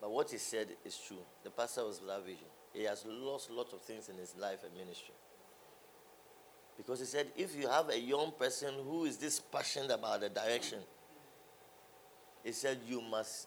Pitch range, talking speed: 120-160 Hz, 190 wpm